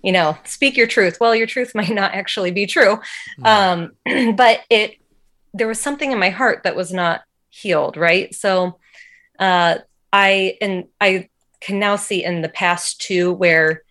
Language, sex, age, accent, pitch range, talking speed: English, female, 30-49, American, 170-205 Hz, 175 wpm